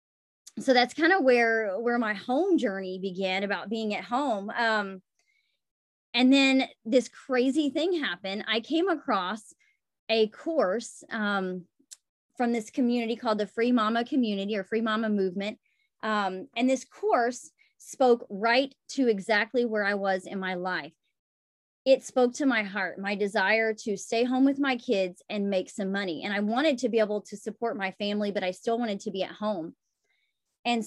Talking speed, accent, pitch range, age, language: 175 wpm, American, 205-265 Hz, 20-39, English